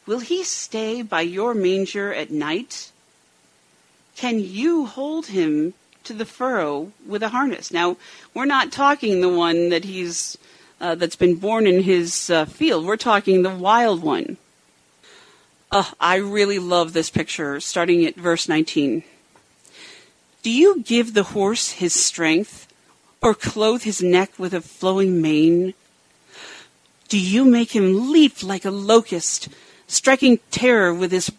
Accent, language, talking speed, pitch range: American, English, 150 wpm, 170-225 Hz